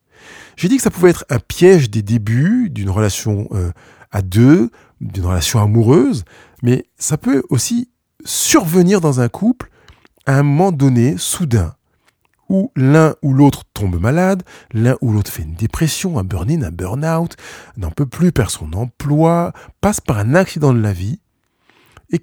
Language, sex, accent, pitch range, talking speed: French, male, French, 110-170 Hz, 165 wpm